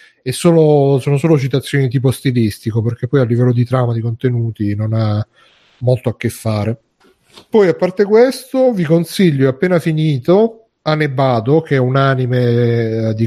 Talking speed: 160 wpm